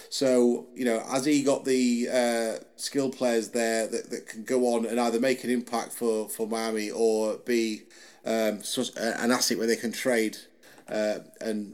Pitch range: 115-135 Hz